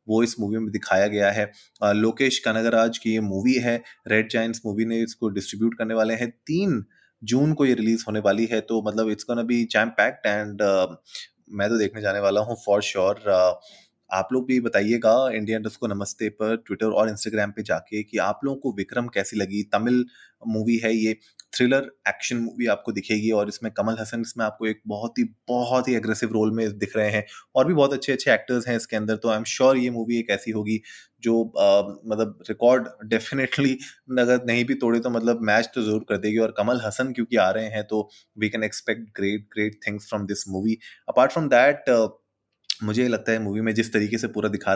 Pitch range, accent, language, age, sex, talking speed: 105-115 Hz, native, Hindi, 20-39, male, 210 wpm